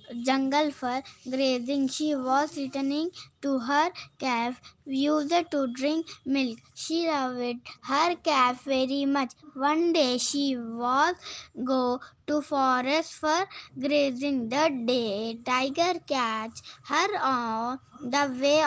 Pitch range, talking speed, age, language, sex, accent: 255-305 Hz, 120 wpm, 20-39, Telugu, female, native